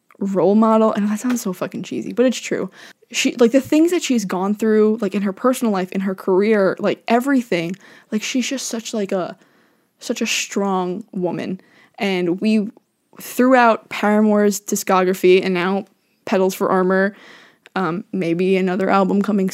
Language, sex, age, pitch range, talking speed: English, female, 20-39, 185-220 Hz, 165 wpm